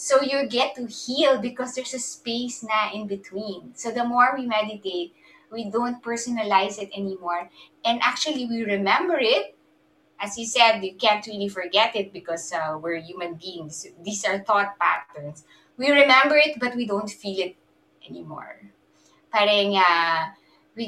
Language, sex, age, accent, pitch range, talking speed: English, female, 20-39, Filipino, 195-255 Hz, 160 wpm